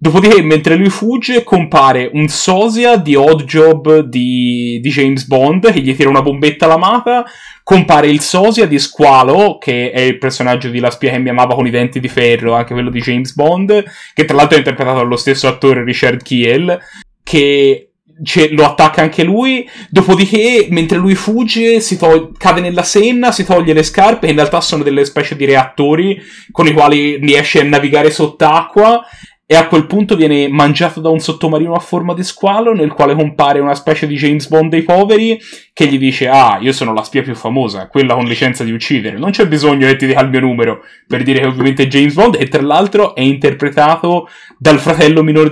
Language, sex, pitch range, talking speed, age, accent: Italian, male, 135-180 Hz, 200 wpm, 30-49, native